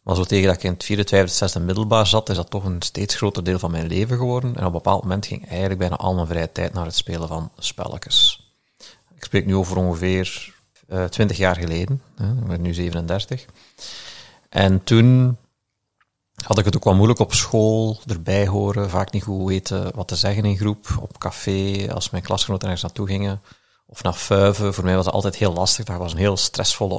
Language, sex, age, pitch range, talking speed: Dutch, male, 40-59, 90-110 Hz, 215 wpm